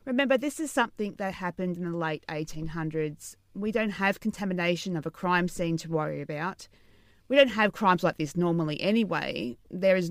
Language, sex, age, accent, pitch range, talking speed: English, female, 30-49, Australian, 165-215 Hz, 185 wpm